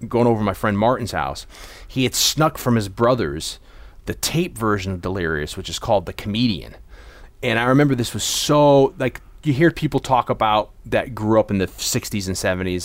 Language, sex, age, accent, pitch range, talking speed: English, male, 30-49, American, 95-130 Hz, 200 wpm